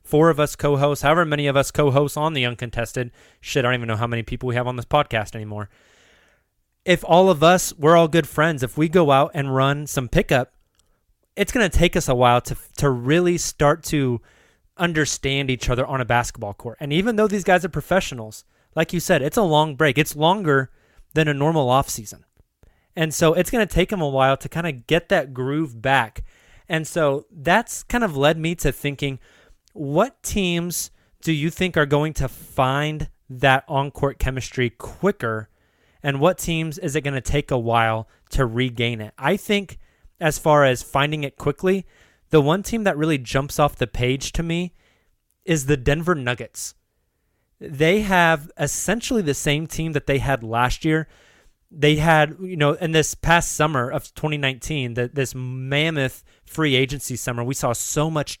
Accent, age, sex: American, 20-39, male